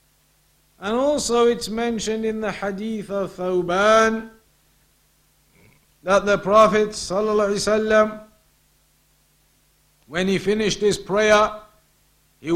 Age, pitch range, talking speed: 50-69, 185-215 Hz, 90 wpm